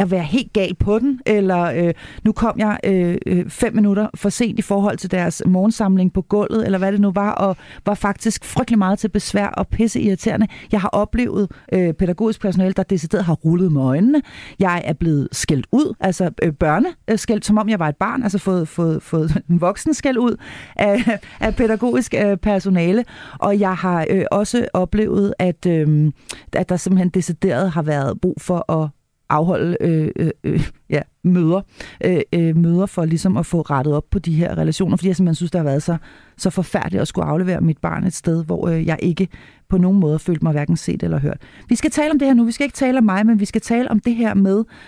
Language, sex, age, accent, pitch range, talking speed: Danish, female, 40-59, native, 175-220 Hz, 215 wpm